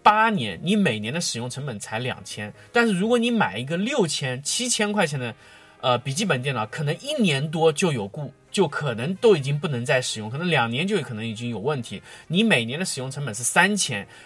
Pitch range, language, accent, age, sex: 115-190 Hz, Chinese, native, 20-39, male